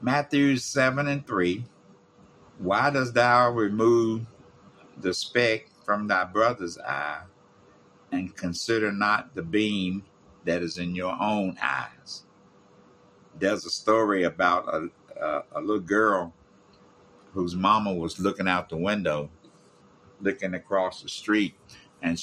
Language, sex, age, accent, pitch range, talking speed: English, male, 60-79, American, 90-105 Hz, 125 wpm